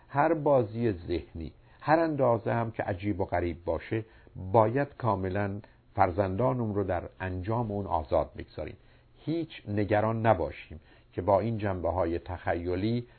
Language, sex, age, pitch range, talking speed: Persian, male, 50-69, 95-120 Hz, 130 wpm